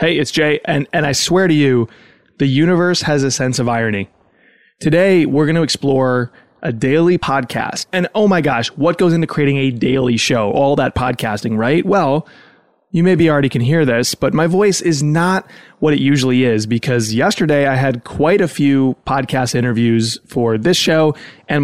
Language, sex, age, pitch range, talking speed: English, male, 20-39, 130-170 Hz, 190 wpm